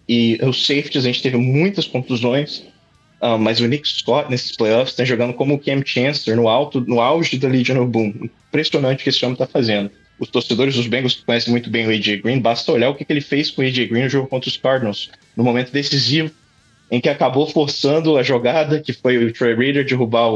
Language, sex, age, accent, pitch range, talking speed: English, male, 20-39, Brazilian, 115-135 Hz, 230 wpm